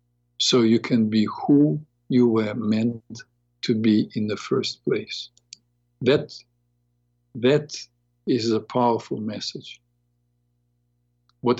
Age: 50-69